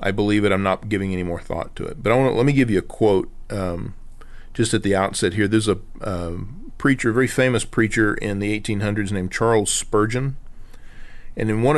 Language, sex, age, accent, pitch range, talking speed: English, male, 40-59, American, 100-130 Hz, 210 wpm